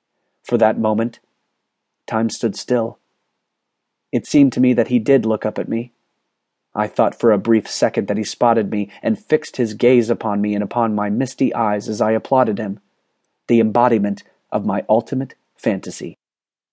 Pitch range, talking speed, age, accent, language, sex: 115-130 Hz, 170 wpm, 40-59, American, English, male